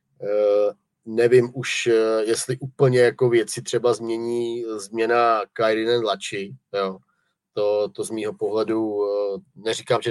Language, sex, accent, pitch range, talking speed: Czech, male, native, 110-120 Hz, 130 wpm